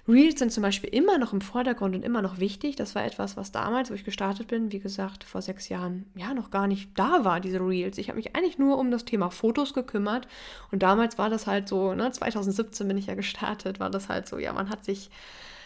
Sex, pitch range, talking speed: female, 190-235 Hz, 240 wpm